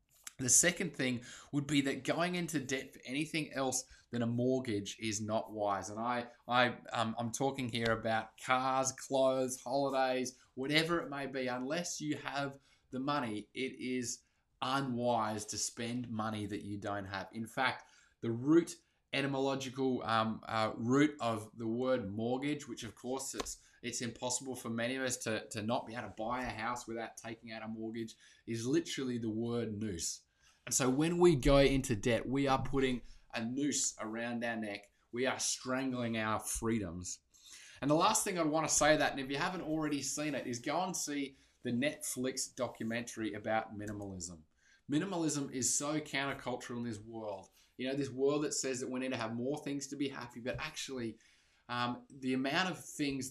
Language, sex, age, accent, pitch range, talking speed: English, male, 20-39, Australian, 110-135 Hz, 185 wpm